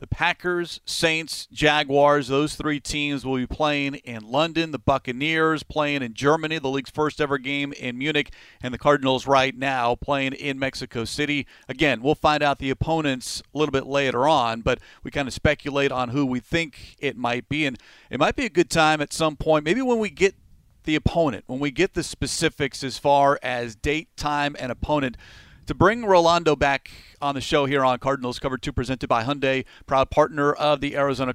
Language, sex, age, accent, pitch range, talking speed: English, male, 40-59, American, 135-155 Hz, 195 wpm